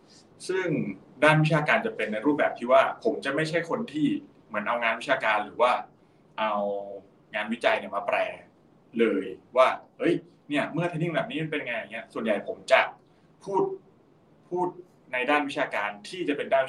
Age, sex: 20-39, male